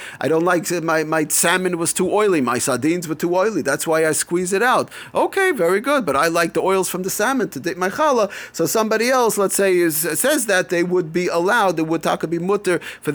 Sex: male